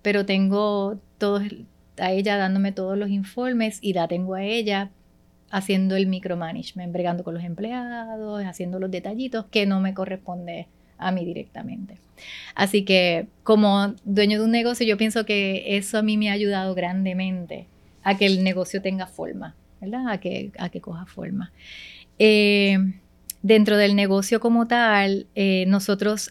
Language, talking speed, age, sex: Spanish, 155 wpm, 30-49, female